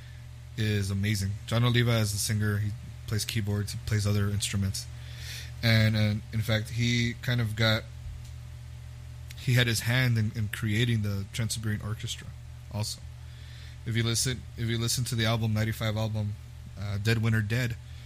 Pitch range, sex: 95-120 Hz, male